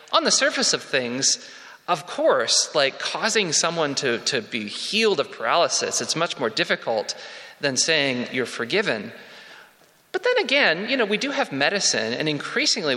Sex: male